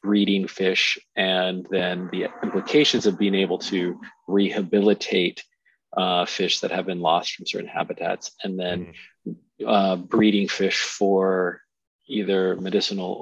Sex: male